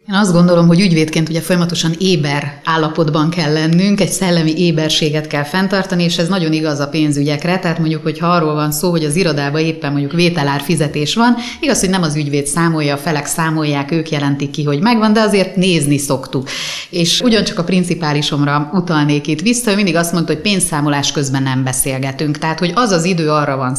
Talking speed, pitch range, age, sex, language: 195 wpm, 145-185 Hz, 30-49, female, Hungarian